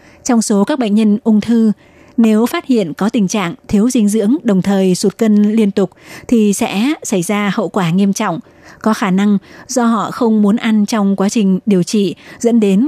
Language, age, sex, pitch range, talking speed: Vietnamese, 20-39, female, 190-230 Hz, 210 wpm